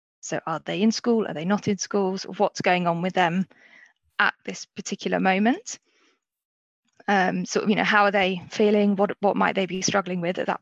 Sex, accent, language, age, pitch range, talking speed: female, British, English, 20-39, 185-215 Hz, 215 wpm